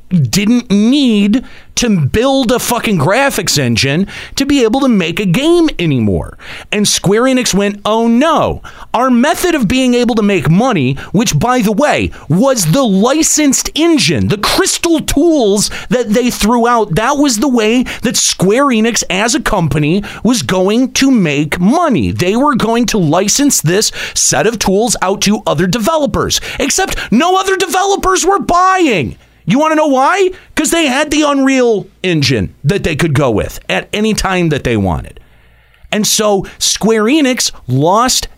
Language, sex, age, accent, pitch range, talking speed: English, male, 40-59, American, 160-260 Hz, 165 wpm